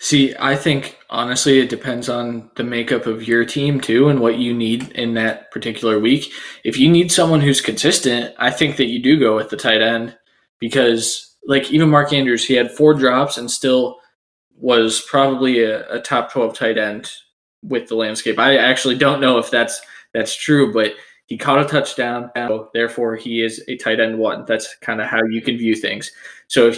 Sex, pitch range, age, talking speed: male, 115-140 Hz, 20-39, 200 wpm